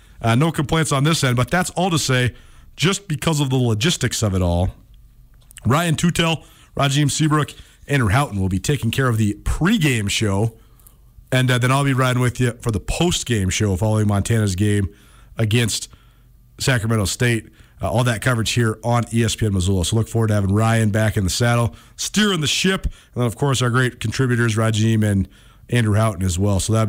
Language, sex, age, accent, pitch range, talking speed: English, male, 40-59, American, 110-150 Hz, 195 wpm